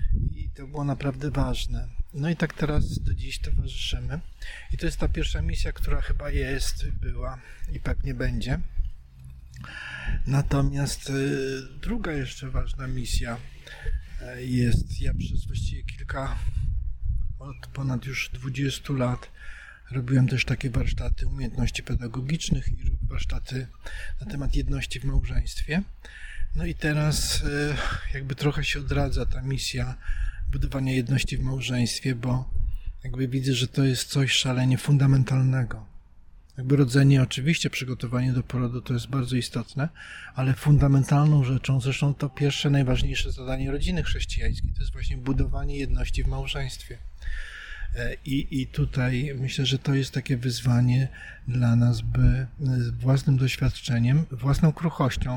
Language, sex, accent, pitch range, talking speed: Polish, male, native, 115-140 Hz, 130 wpm